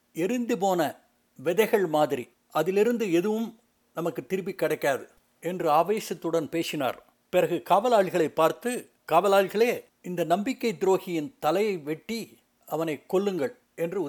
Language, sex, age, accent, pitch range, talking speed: Tamil, male, 60-79, native, 165-210 Hz, 100 wpm